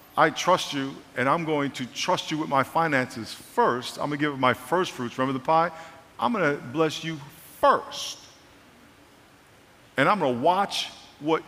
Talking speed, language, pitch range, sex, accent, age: 185 wpm, English, 145-225 Hz, male, American, 50-69